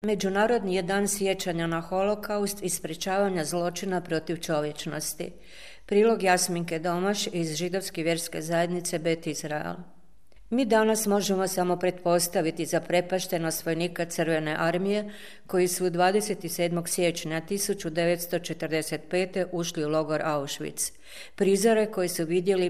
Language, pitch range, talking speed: Croatian, 160-185 Hz, 115 wpm